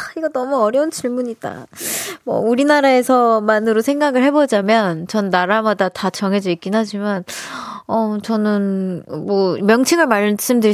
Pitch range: 195-265 Hz